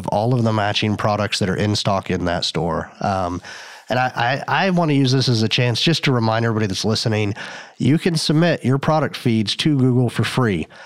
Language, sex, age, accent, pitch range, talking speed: English, male, 30-49, American, 110-130 Hz, 220 wpm